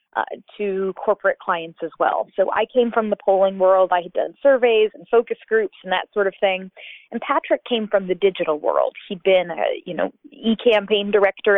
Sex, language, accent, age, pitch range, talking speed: female, English, American, 30-49, 190-225 Hz, 195 wpm